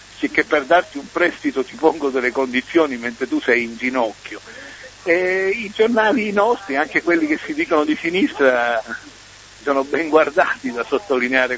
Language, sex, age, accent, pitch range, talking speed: Italian, male, 60-79, native, 130-170 Hz, 155 wpm